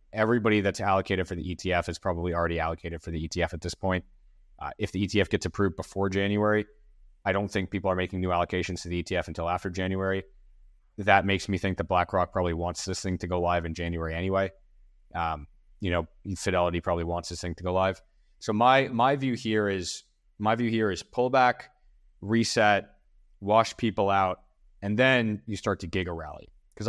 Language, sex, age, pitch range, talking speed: English, male, 30-49, 85-105 Hz, 190 wpm